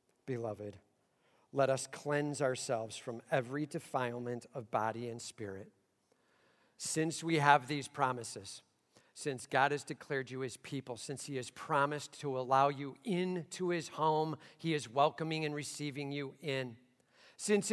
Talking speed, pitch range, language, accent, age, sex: 140 wpm, 115-155 Hz, English, American, 50-69, male